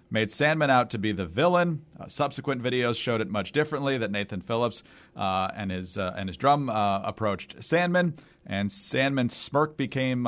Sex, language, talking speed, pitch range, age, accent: male, English, 180 wpm, 105-145 Hz, 40-59, American